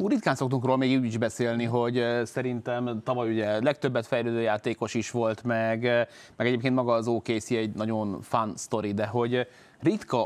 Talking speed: 170 wpm